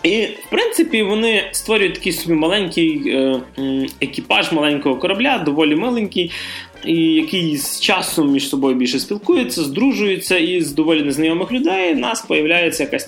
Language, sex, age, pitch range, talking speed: Russian, male, 20-39, 140-210 Hz, 140 wpm